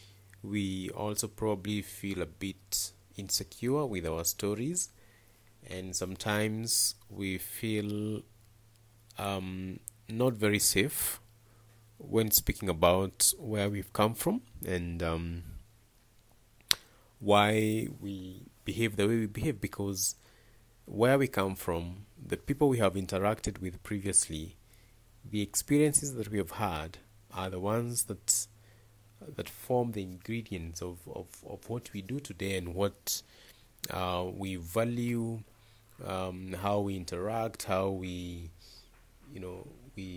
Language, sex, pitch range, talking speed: English, male, 95-110 Hz, 120 wpm